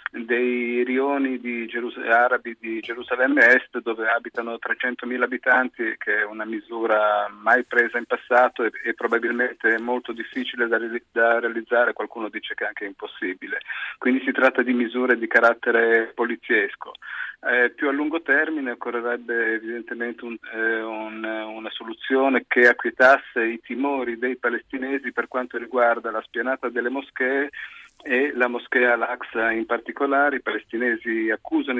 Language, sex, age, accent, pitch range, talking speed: Italian, male, 40-59, native, 115-130 Hz, 135 wpm